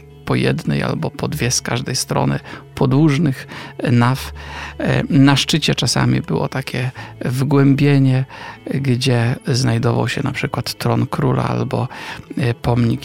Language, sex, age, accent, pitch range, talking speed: Polish, male, 50-69, native, 115-140 Hz, 110 wpm